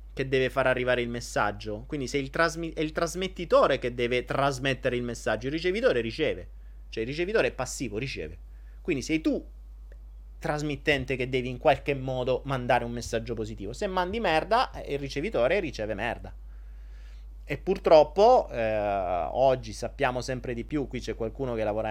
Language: Italian